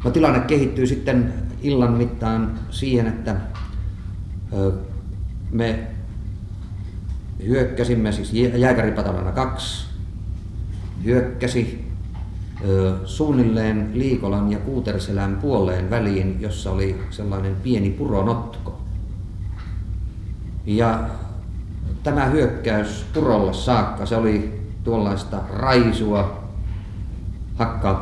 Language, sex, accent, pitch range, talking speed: Finnish, male, native, 95-110 Hz, 75 wpm